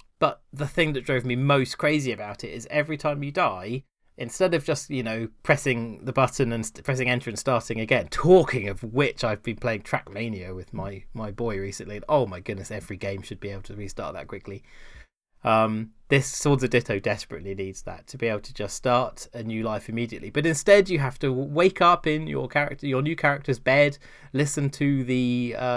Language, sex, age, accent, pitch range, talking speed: English, male, 20-39, British, 115-145 Hz, 205 wpm